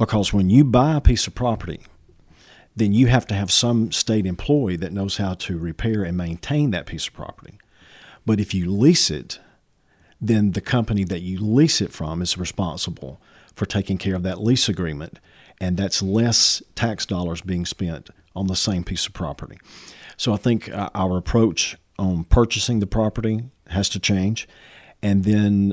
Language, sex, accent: English, male, American